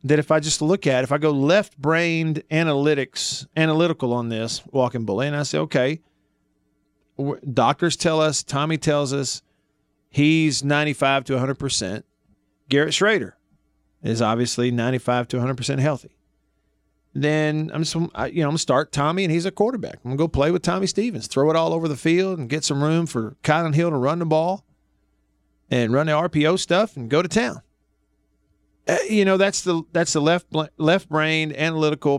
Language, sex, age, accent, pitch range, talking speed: English, male, 40-59, American, 120-165 Hz, 175 wpm